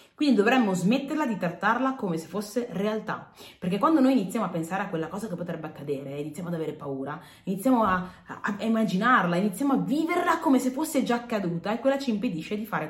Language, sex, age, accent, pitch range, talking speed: Italian, female, 30-49, native, 165-230 Hz, 205 wpm